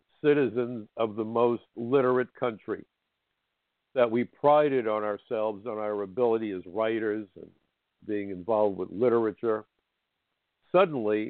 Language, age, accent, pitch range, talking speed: English, 60-79, American, 110-150 Hz, 115 wpm